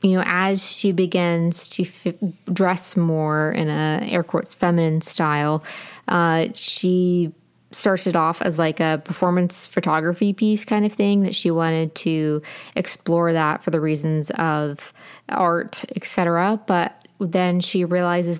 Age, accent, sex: 20-39, American, female